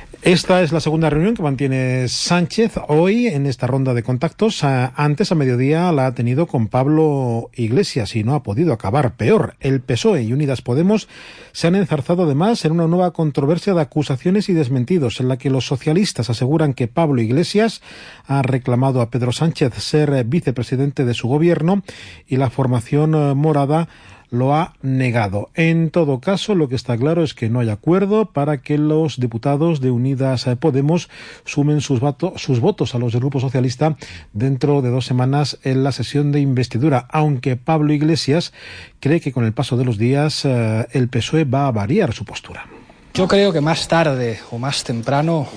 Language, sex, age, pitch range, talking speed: Spanish, male, 40-59, 125-155 Hz, 180 wpm